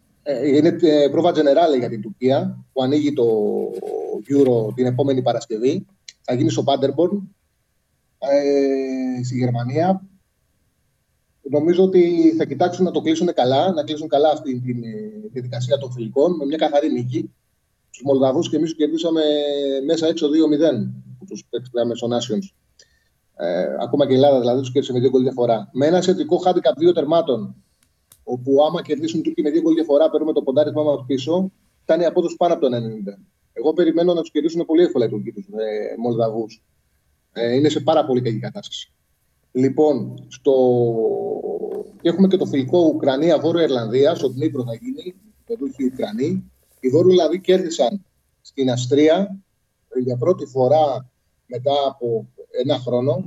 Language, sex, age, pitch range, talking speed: Greek, male, 30-49, 120-165 Hz, 145 wpm